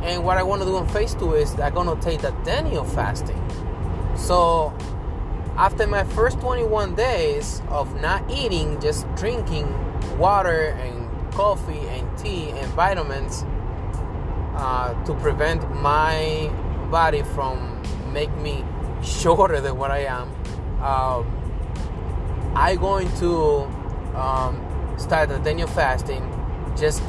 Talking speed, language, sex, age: 130 wpm, English, male, 20-39